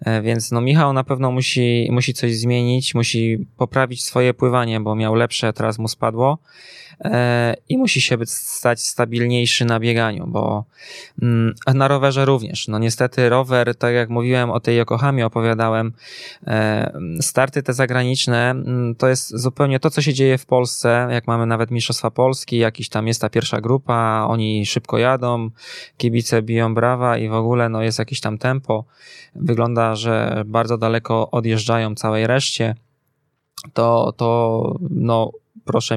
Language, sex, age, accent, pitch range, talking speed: Polish, male, 20-39, native, 115-130 Hz, 145 wpm